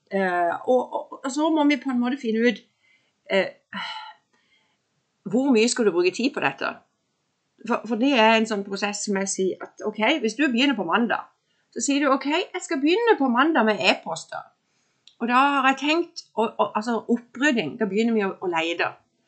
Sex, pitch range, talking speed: female, 185-260 Hz, 195 wpm